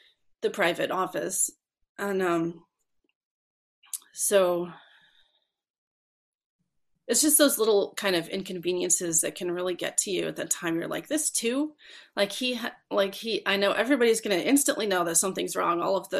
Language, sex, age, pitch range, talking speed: English, female, 30-49, 175-240 Hz, 160 wpm